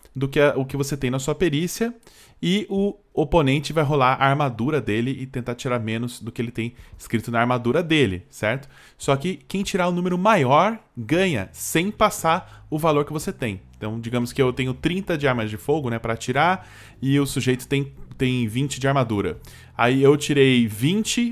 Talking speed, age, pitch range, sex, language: 205 wpm, 10-29, 115-150 Hz, male, Portuguese